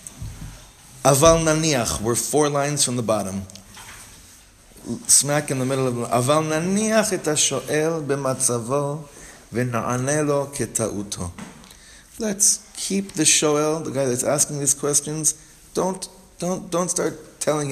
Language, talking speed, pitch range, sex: English, 95 wpm, 125-175 Hz, male